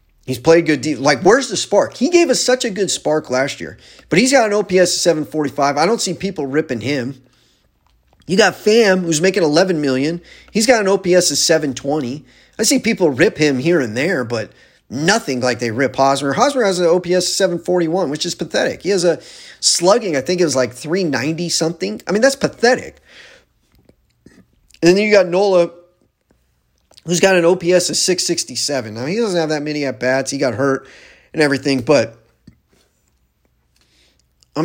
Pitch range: 140-190 Hz